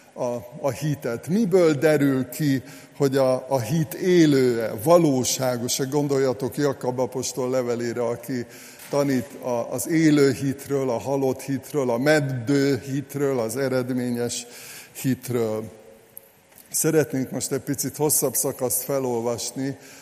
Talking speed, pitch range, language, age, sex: 115 wpm, 125-140 Hz, Hungarian, 60-79, male